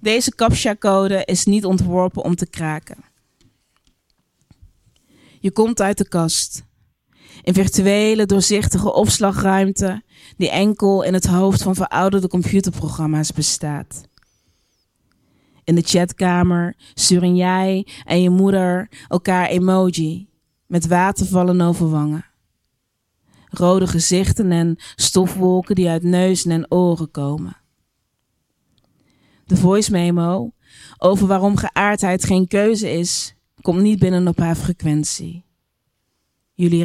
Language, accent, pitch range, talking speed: Dutch, Dutch, 165-190 Hz, 110 wpm